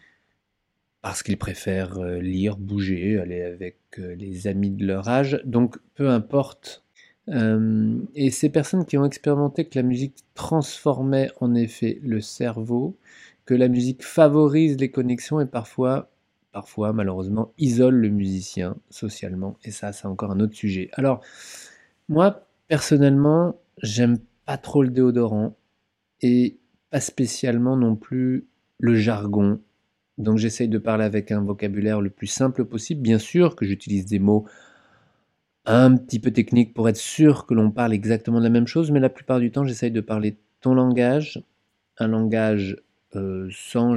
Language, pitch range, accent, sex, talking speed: French, 105-130 Hz, French, male, 150 wpm